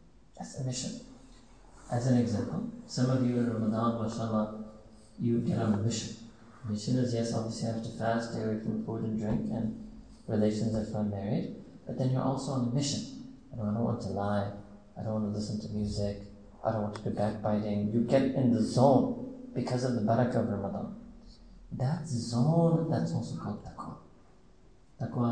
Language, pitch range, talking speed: English, 110-130 Hz, 185 wpm